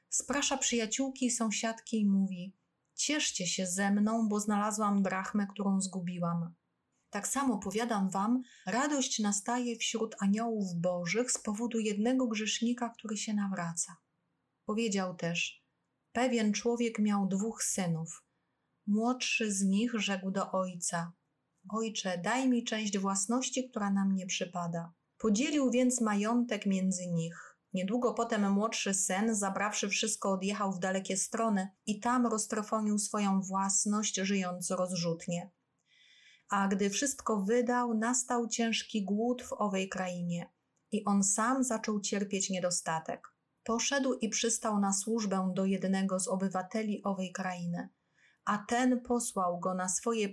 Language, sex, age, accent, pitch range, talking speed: Polish, female, 30-49, native, 190-230 Hz, 130 wpm